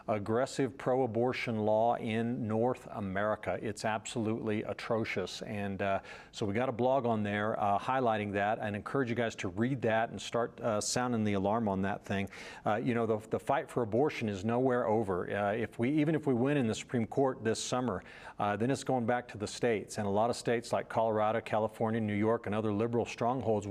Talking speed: 210 wpm